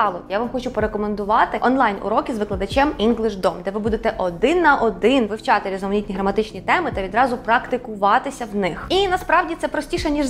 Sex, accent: female, native